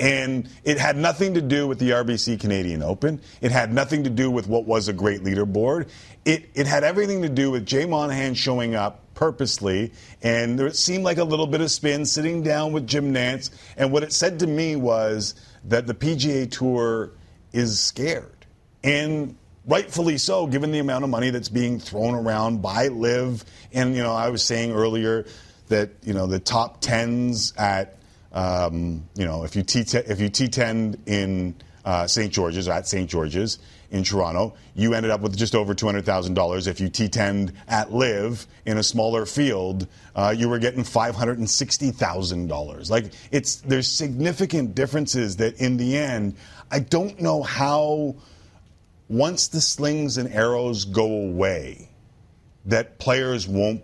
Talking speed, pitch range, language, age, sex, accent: 165 wpm, 100-135 Hz, English, 40-59, male, American